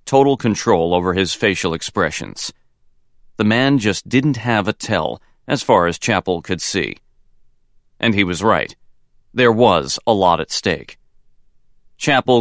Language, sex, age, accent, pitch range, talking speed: English, male, 40-59, American, 90-115 Hz, 145 wpm